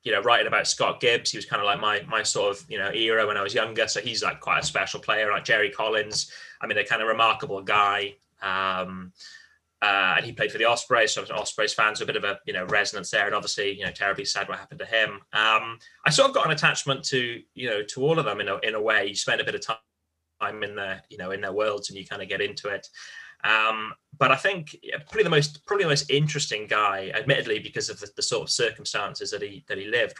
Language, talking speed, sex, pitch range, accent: English, 270 wpm, male, 100-150 Hz, British